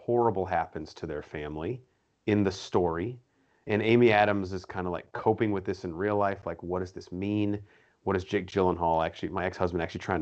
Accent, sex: American, male